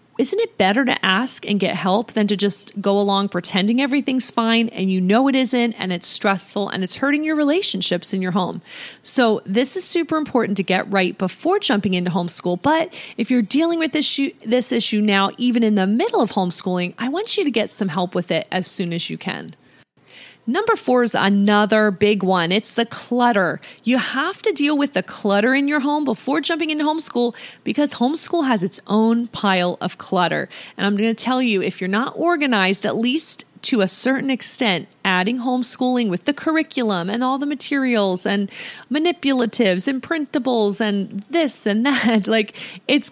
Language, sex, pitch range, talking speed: English, female, 195-270 Hz, 190 wpm